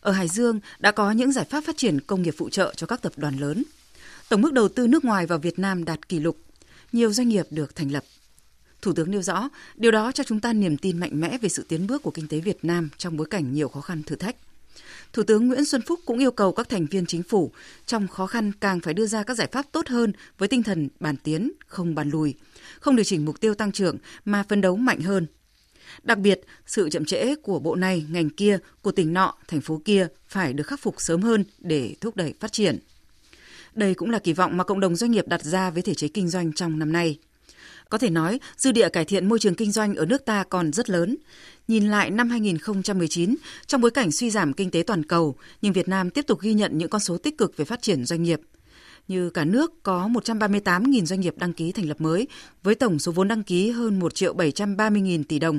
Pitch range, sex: 170-225 Hz, female